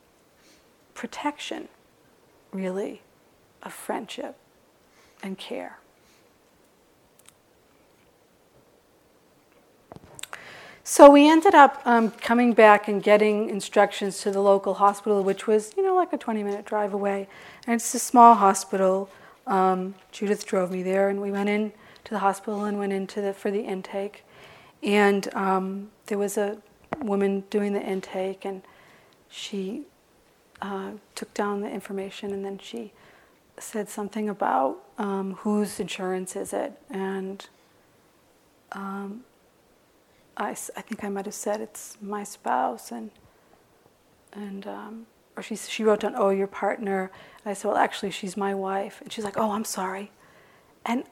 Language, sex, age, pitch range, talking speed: English, female, 40-59, 195-220 Hz, 140 wpm